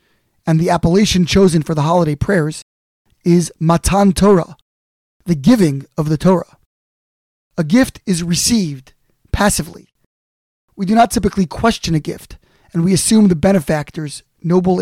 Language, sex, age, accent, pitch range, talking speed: English, male, 20-39, American, 155-195 Hz, 140 wpm